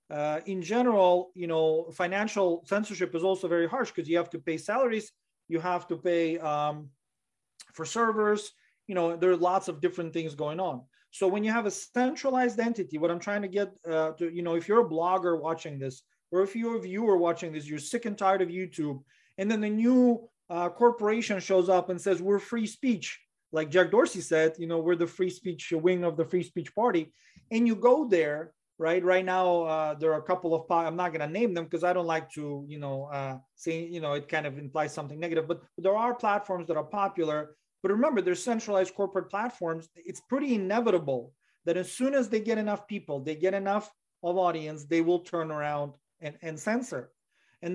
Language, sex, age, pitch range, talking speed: English, male, 30-49, 160-200 Hz, 215 wpm